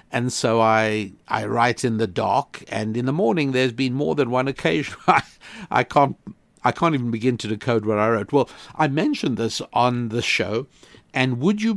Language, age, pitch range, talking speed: English, 60-79, 110-130 Hz, 195 wpm